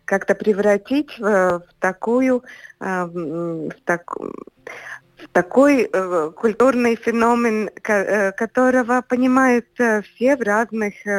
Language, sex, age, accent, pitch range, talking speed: Russian, female, 50-69, native, 175-245 Hz, 85 wpm